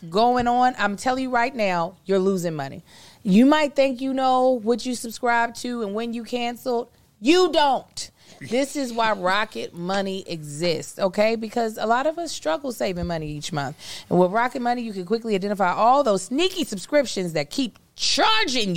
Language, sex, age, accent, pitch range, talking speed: English, female, 30-49, American, 180-245 Hz, 180 wpm